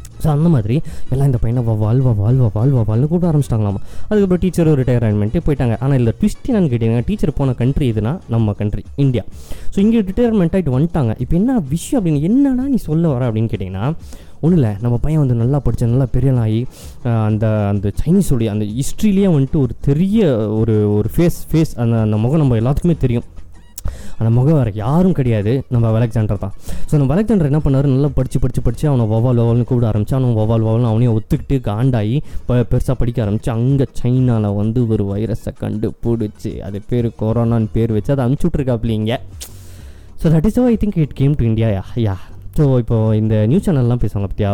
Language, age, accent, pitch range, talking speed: Tamil, 20-39, native, 110-145 Hz, 180 wpm